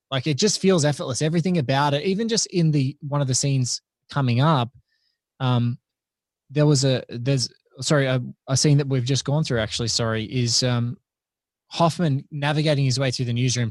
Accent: Australian